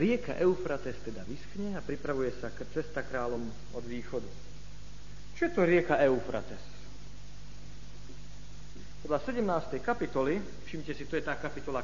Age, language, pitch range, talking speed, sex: 40-59, Slovak, 125-190 Hz, 130 wpm, male